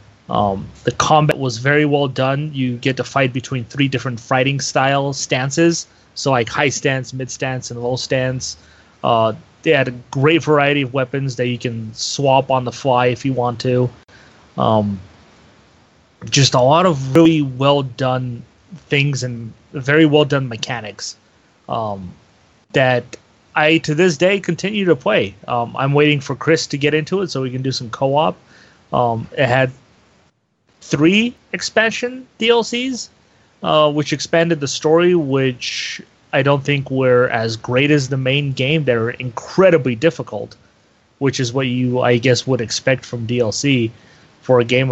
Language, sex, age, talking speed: English, male, 30-49, 160 wpm